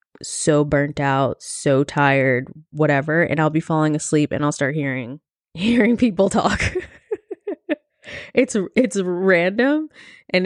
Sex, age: female, 20-39